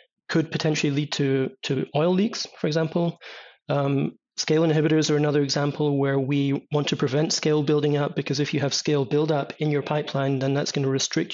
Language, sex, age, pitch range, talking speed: English, male, 30-49, 140-160 Hz, 195 wpm